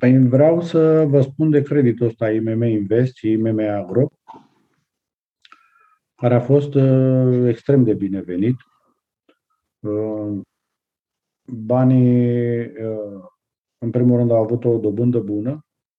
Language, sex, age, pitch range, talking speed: Romanian, male, 50-69, 110-130 Hz, 105 wpm